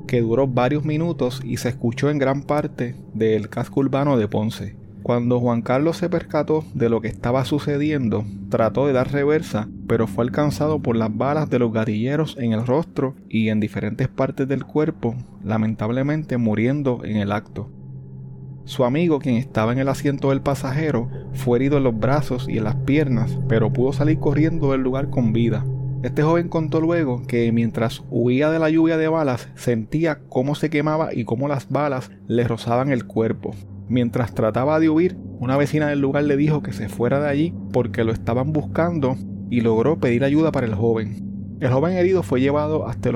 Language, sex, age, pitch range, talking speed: Spanish, male, 30-49, 115-145 Hz, 190 wpm